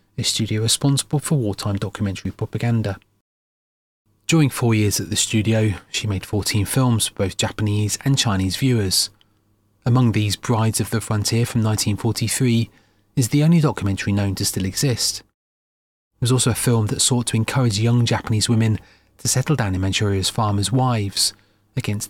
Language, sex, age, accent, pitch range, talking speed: English, male, 30-49, British, 105-125 Hz, 165 wpm